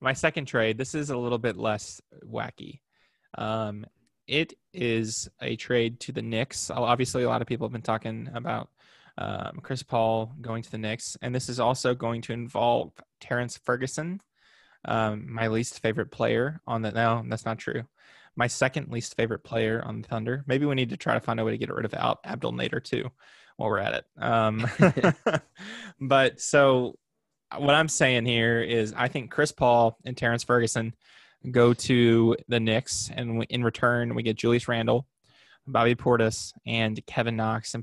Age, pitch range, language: 20-39, 115-135 Hz, English